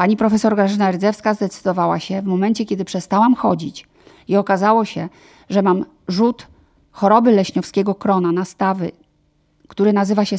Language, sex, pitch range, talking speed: Polish, female, 195-260 Hz, 140 wpm